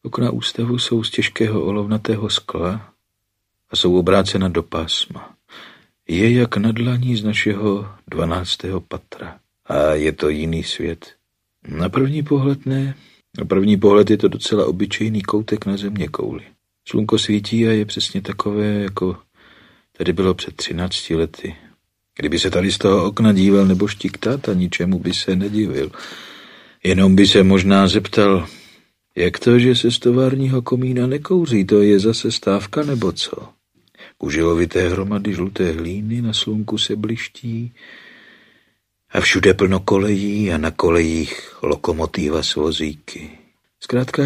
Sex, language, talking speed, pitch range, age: male, Czech, 135 wpm, 95-115 Hz, 50-69